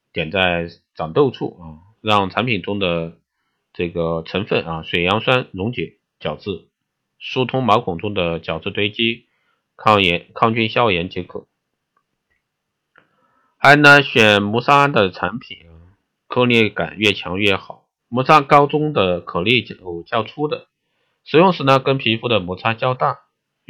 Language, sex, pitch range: Chinese, male, 90-120 Hz